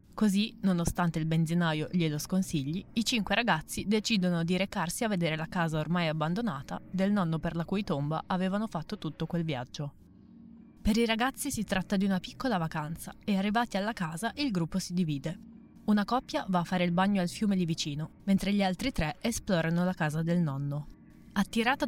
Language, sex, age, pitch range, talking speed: Italian, female, 20-39, 170-210 Hz, 185 wpm